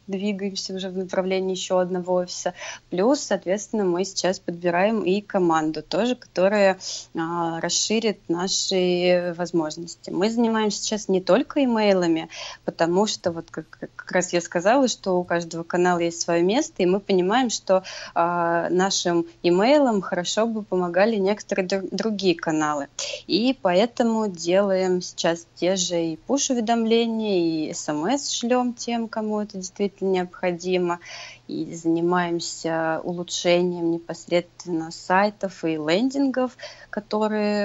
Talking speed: 120 wpm